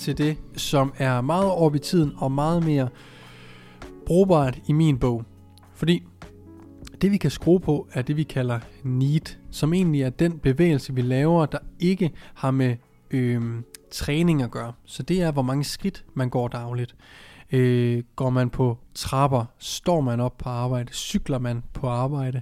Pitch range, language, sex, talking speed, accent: 125-155 Hz, Danish, male, 170 wpm, native